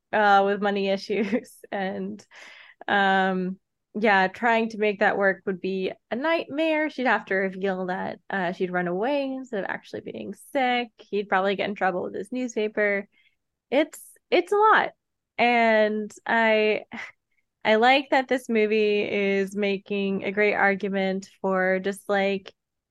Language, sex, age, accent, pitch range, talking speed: English, female, 20-39, American, 185-215 Hz, 150 wpm